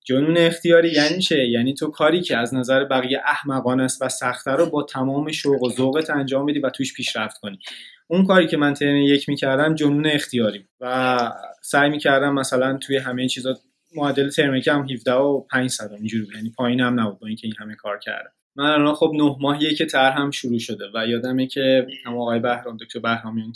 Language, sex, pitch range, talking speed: Persian, male, 120-145 Hz, 210 wpm